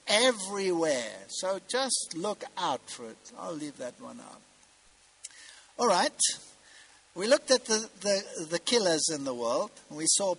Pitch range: 155-230 Hz